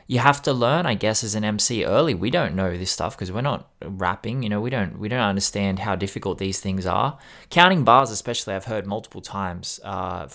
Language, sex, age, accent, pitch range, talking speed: English, male, 20-39, Australian, 95-120 Hz, 225 wpm